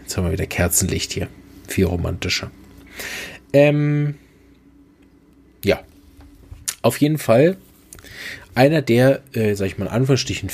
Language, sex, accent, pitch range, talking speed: German, male, German, 95-130 Hz, 115 wpm